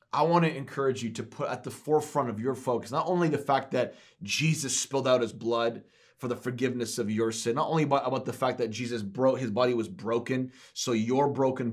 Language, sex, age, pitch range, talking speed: English, male, 30-49, 120-150 Hz, 230 wpm